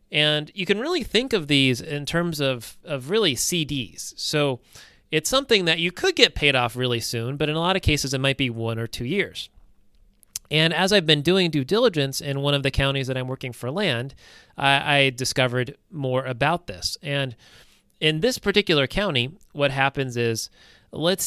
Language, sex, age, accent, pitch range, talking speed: English, male, 30-49, American, 125-165 Hz, 195 wpm